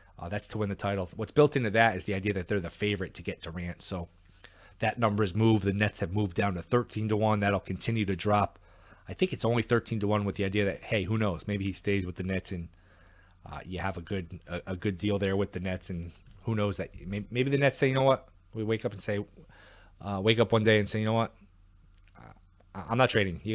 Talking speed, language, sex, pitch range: 260 wpm, English, male, 95-115 Hz